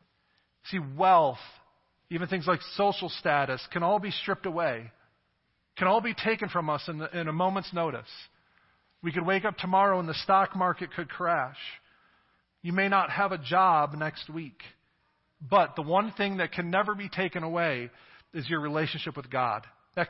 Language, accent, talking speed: English, American, 175 wpm